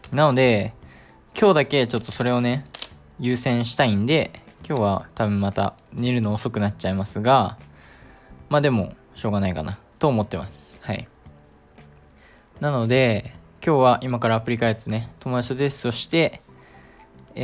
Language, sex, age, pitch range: Japanese, male, 20-39, 95-130 Hz